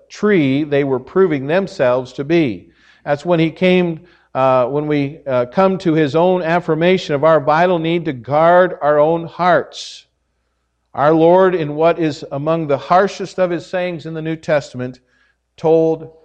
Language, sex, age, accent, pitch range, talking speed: English, male, 50-69, American, 145-185 Hz, 165 wpm